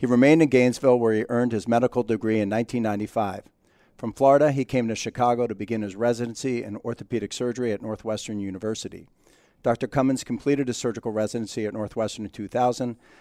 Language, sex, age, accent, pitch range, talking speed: English, male, 50-69, American, 110-130 Hz, 175 wpm